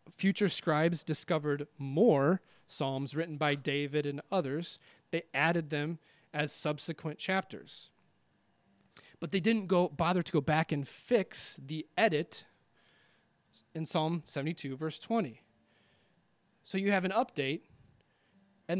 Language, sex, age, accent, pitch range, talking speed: English, male, 30-49, American, 145-185 Hz, 125 wpm